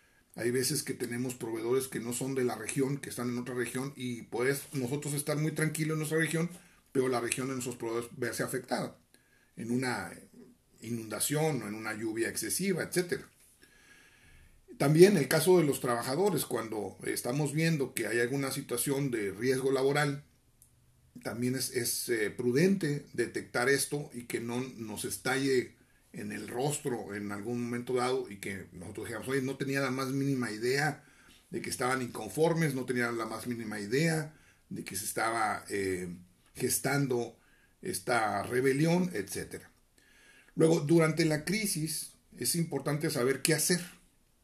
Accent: Mexican